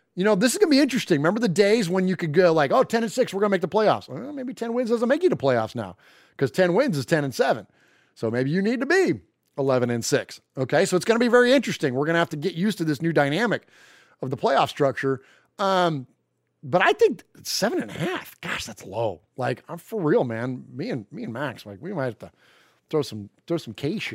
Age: 30-49